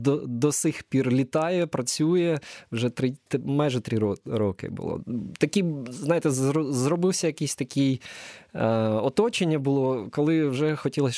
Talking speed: 115 wpm